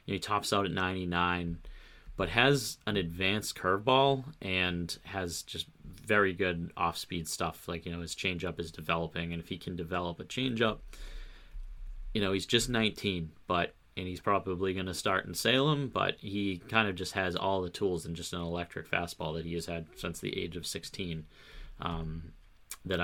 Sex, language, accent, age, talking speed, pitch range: male, English, American, 30-49, 180 wpm, 85-105 Hz